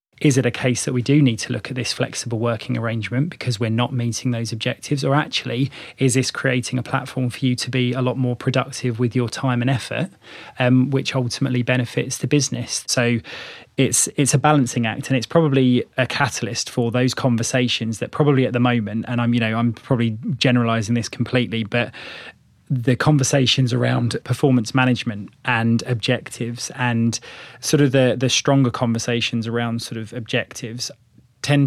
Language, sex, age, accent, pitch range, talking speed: English, male, 20-39, British, 115-130 Hz, 180 wpm